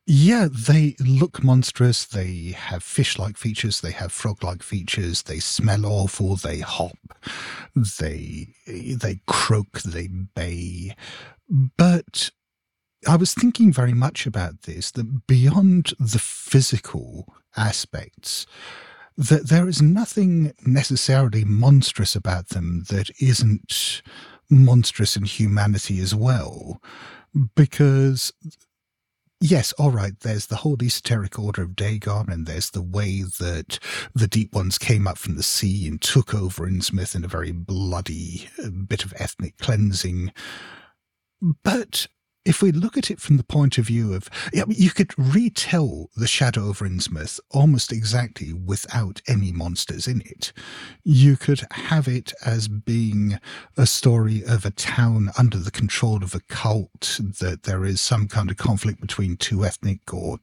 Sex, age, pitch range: male, 50-69, 95-130 Hz